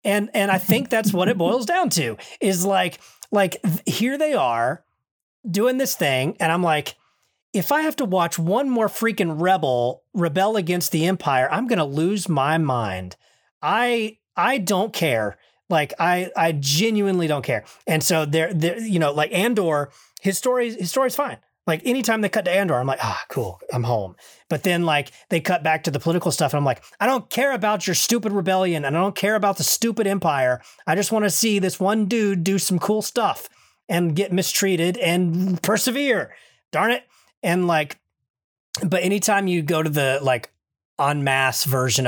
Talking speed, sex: 195 wpm, male